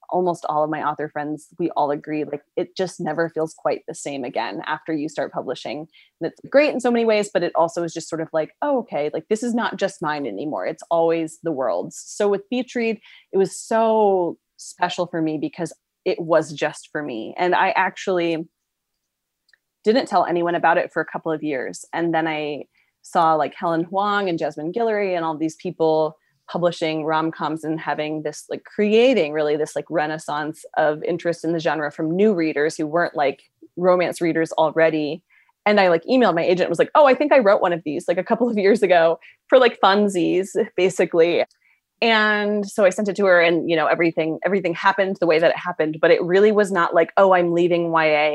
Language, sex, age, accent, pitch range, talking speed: English, female, 20-39, American, 155-195 Hz, 210 wpm